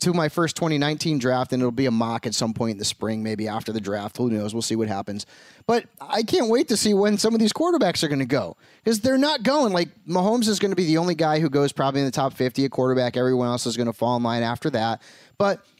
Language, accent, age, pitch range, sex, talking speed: English, American, 30-49, 125-155 Hz, male, 280 wpm